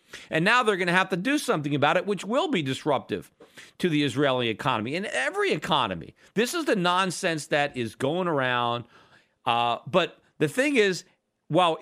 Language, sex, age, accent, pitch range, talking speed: English, male, 40-59, American, 160-235 Hz, 185 wpm